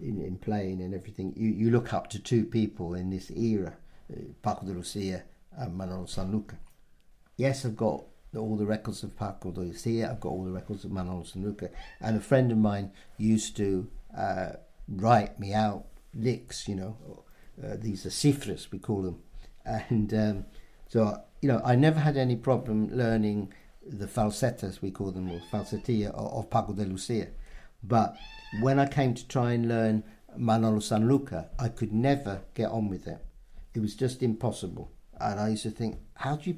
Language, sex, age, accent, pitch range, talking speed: English, male, 60-79, British, 100-125 Hz, 185 wpm